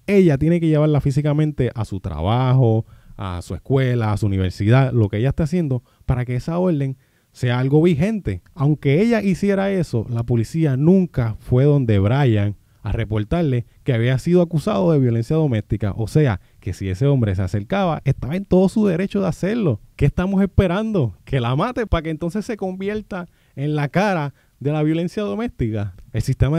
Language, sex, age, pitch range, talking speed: Spanish, male, 20-39, 115-170 Hz, 180 wpm